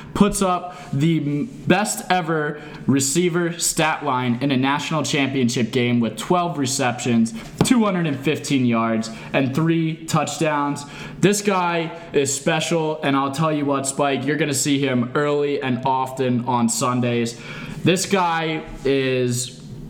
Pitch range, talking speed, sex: 125-160 Hz, 135 wpm, male